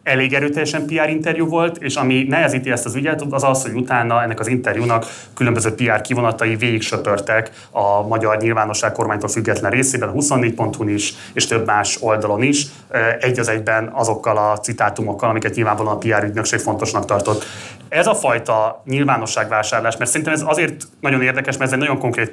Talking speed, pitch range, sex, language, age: 175 wpm, 110-135 Hz, male, Hungarian, 30-49